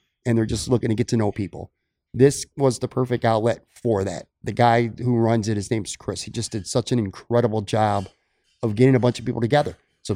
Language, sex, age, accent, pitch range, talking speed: English, male, 30-49, American, 110-145 Hz, 230 wpm